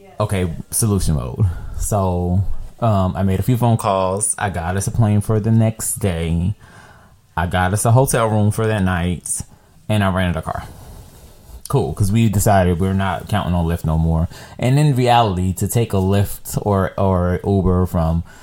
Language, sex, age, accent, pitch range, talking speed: English, male, 20-39, American, 90-115 Hz, 180 wpm